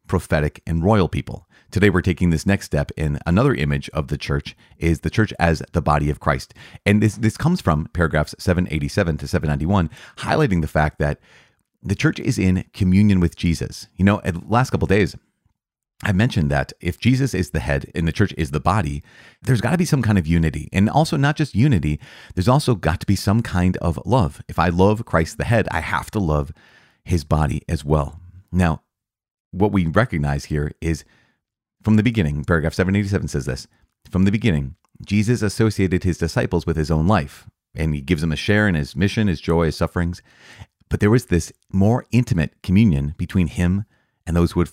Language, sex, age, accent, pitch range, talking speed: English, male, 30-49, American, 80-105 Hz, 205 wpm